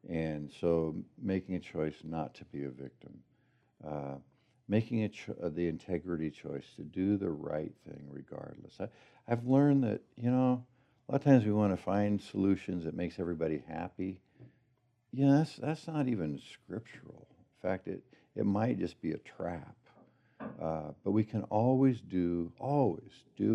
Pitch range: 75-115 Hz